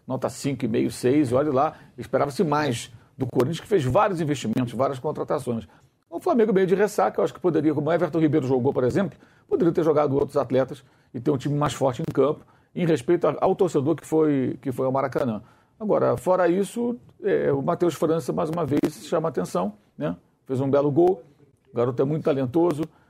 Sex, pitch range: male, 125-155 Hz